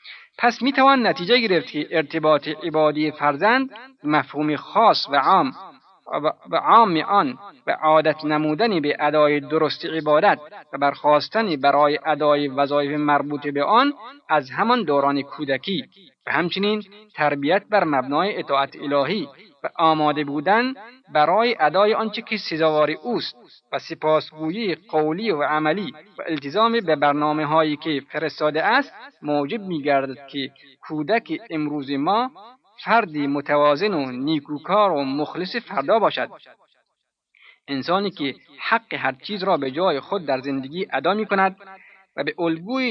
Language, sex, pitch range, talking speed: Persian, male, 145-200 Hz, 130 wpm